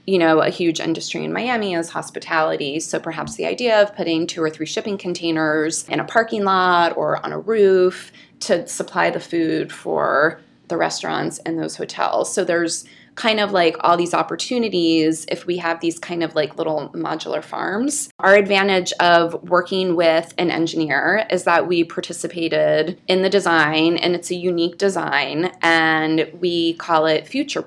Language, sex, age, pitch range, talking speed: English, female, 20-39, 160-185 Hz, 175 wpm